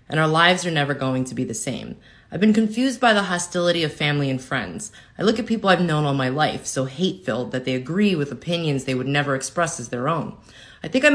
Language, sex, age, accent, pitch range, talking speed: English, female, 20-39, American, 145-215 Hz, 250 wpm